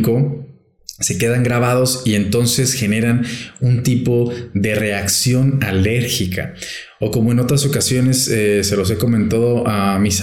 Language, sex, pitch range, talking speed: Spanish, male, 105-120 Hz, 135 wpm